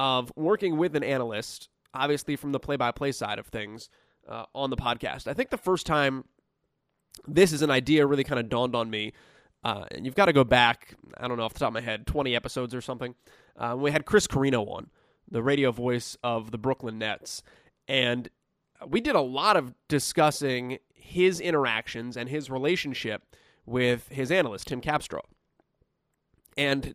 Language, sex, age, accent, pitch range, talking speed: English, male, 20-39, American, 120-145 Hz, 185 wpm